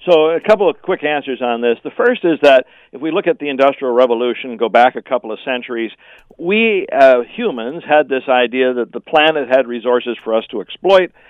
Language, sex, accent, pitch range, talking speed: English, male, American, 125-160 Hz, 210 wpm